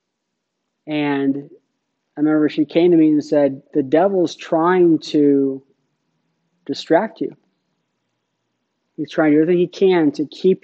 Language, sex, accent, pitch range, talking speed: English, male, American, 145-225 Hz, 135 wpm